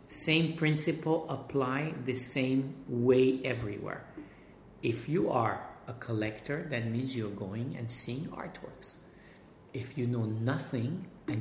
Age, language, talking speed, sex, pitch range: 50-69, English, 125 wpm, male, 120-140 Hz